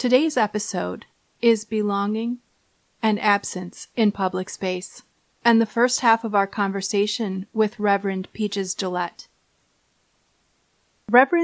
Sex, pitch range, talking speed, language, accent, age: female, 195-230 Hz, 110 wpm, English, American, 30-49